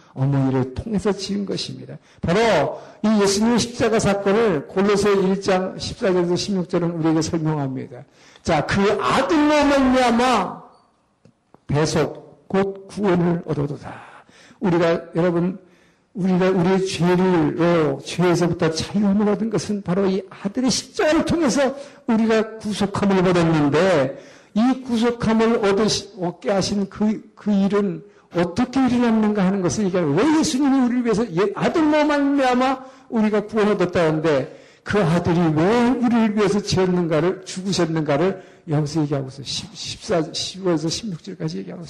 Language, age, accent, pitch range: Korean, 50-69, native, 170-220 Hz